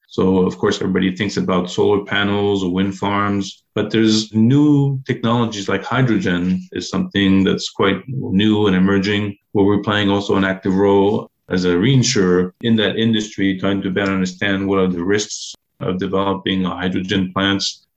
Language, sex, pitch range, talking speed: English, male, 95-110 Hz, 165 wpm